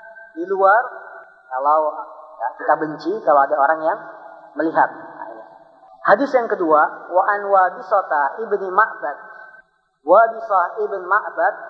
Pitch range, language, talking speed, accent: 160-215 Hz, Indonesian, 130 wpm, native